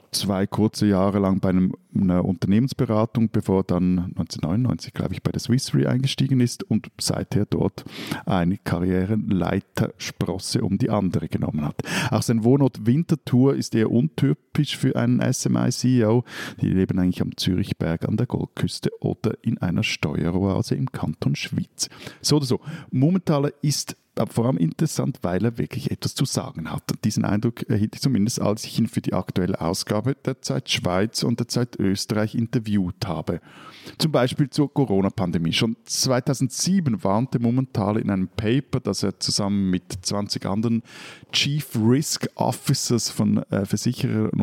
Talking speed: 155 wpm